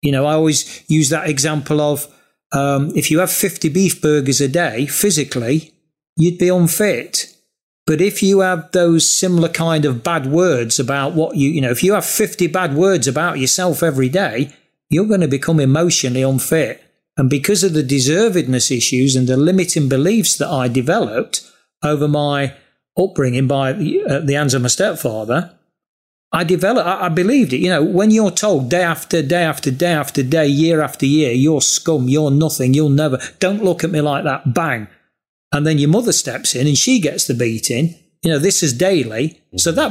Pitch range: 140-175 Hz